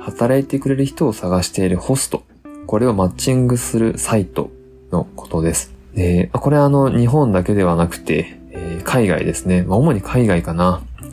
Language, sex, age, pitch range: Japanese, male, 20-39, 85-120 Hz